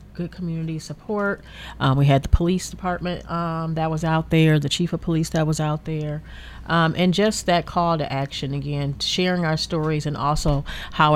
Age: 40-59